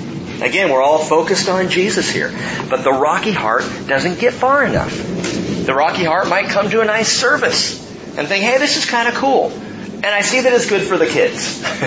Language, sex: English, male